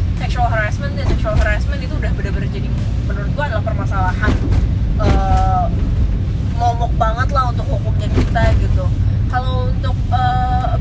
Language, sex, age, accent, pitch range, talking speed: Indonesian, female, 20-39, native, 95-105 Hz, 120 wpm